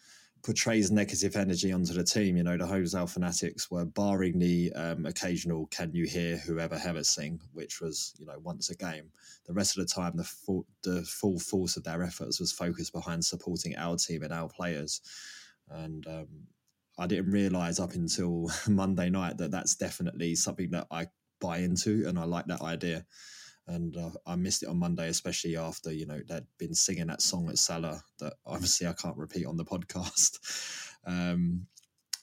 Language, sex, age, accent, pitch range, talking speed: English, male, 20-39, British, 85-100 Hz, 190 wpm